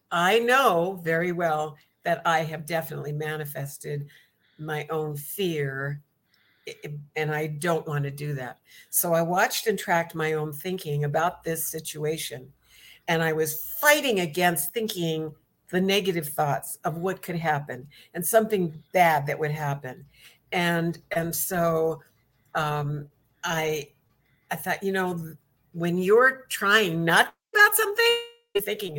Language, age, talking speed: English, 60-79, 135 wpm